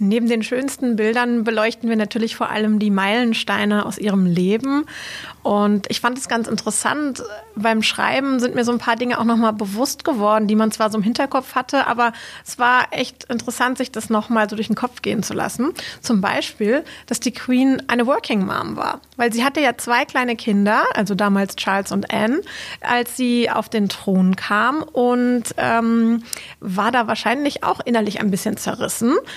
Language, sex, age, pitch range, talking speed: German, female, 30-49, 210-250 Hz, 185 wpm